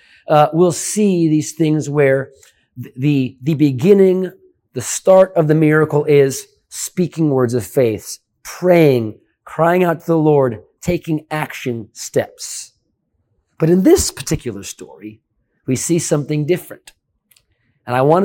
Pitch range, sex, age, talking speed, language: 120-170 Hz, male, 30-49, 130 wpm, English